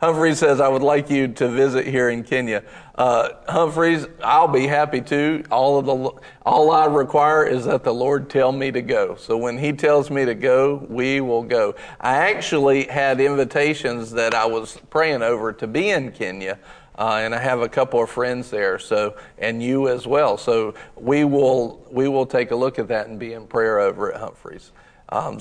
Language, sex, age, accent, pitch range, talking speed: English, male, 50-69, American, 115-150 Hz, 200 wpm